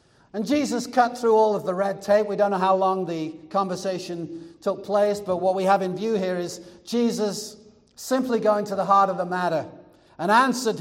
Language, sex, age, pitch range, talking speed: English, male, 60-79, 170-205 Hz, 205 wpm